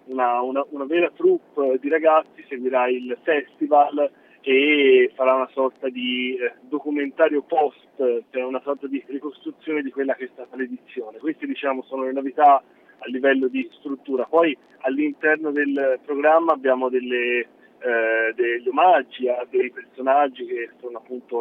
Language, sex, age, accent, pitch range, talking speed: Italian, male, 30-49, native, 130-160 Hz, 150 wpm